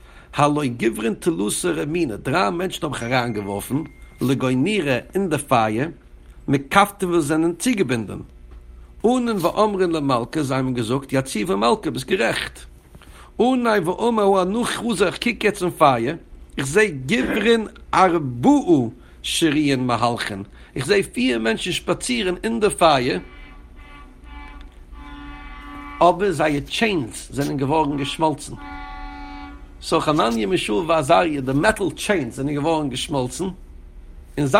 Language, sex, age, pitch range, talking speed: English, male, 60-79, 120-190 Hz, 90 wpm